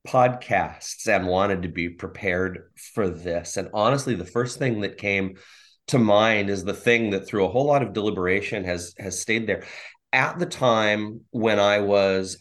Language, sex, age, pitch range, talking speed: English, male, 30-49, 95-110 Hz, 180 wpm